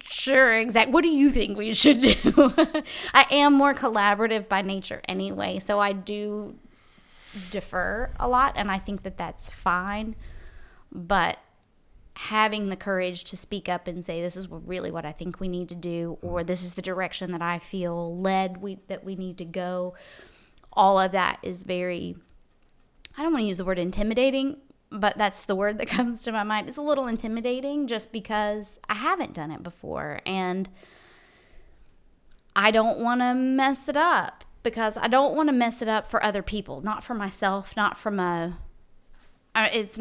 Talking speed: 180 wpm